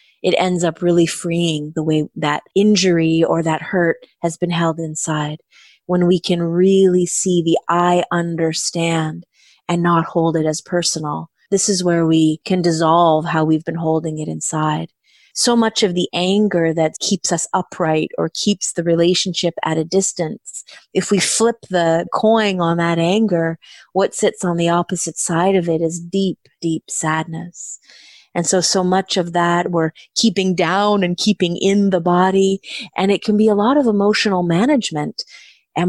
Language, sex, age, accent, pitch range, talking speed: English, female, 30-49, American, 165-190 Hz, 170 wpm